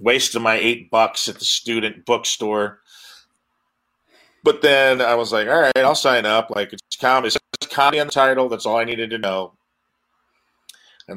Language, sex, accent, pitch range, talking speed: English, male, American, 95-115 Hz, 170 wpm